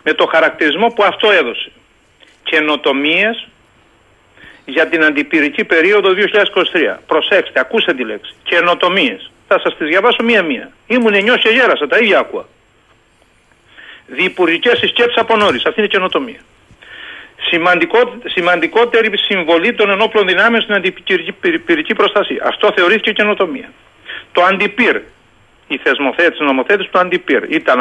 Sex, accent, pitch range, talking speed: male, native, 165-235 Hz, 125 wpm